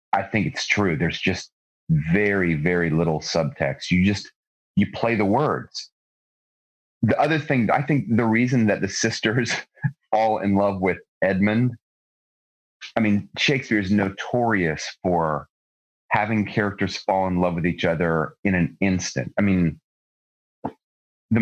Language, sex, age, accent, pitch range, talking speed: English, male, 30-49, American, 85-105 Hz, 145 wpm